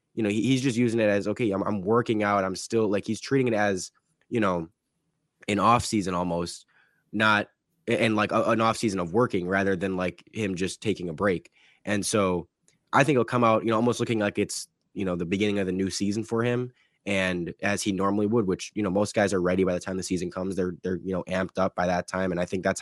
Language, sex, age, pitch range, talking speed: English, male, 10-29, 95-110 Hz, 250 wpm